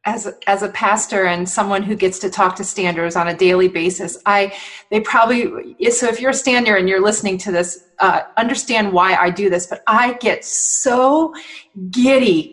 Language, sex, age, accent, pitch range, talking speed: English, female, 30-49, American, 205-285 Hz, 195 wpm